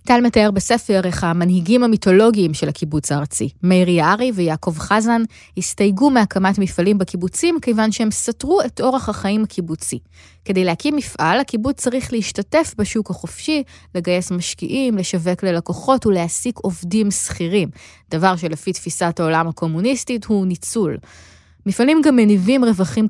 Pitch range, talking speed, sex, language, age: 175-235 Hz, 130 wpm, female, Hebrew, 20-39